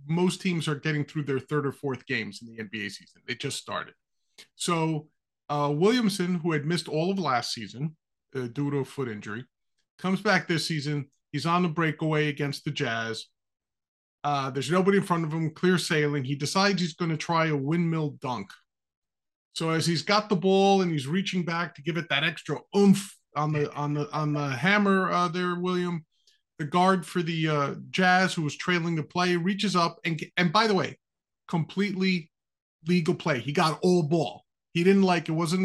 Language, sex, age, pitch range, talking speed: English, male, 30-49, 145-185 Hz, 195 wpm